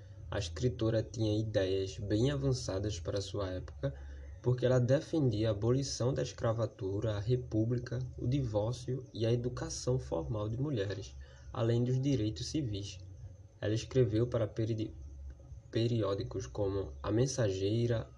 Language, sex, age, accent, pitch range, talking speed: Portuguese, male, 10-29, Brazilian, 100-125 Hz, 125 wpm